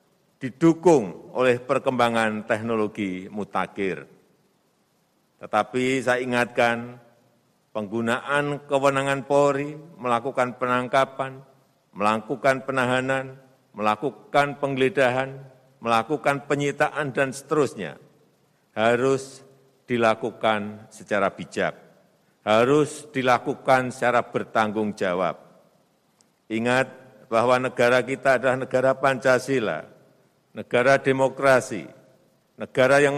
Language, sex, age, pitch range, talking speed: Indonesian, male, 50-69, 115-135 Hz, 75 wpm